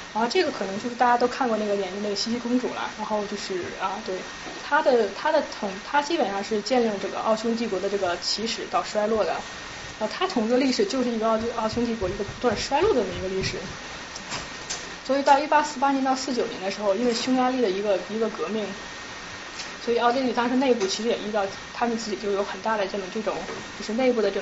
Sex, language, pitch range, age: female, Chinese, 205-255 Hz, 20-39